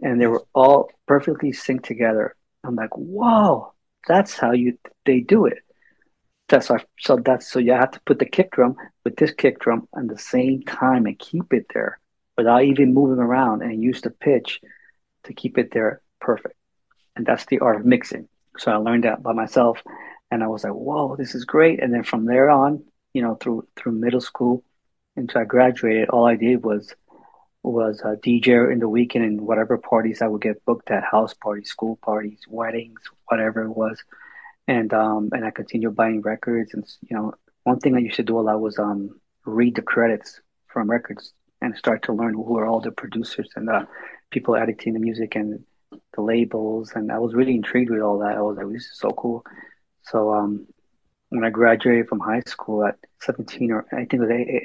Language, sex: English, male